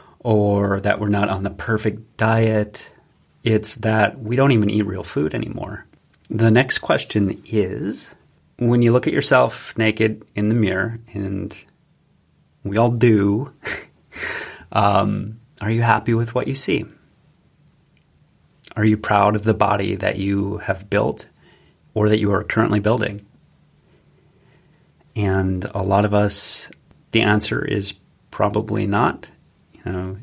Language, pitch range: English, 100-110 Hz